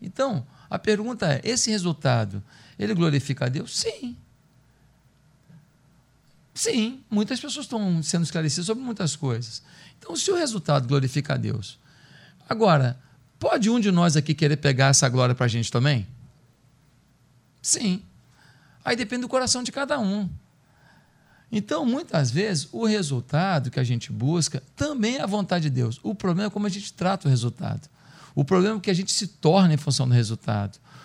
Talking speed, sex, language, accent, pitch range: 165 wpm, male, Portuguese, Brazilian, 135-195 Hz